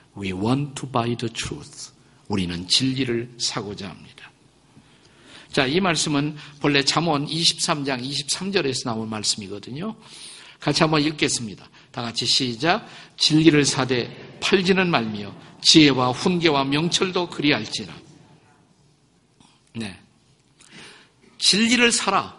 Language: Korean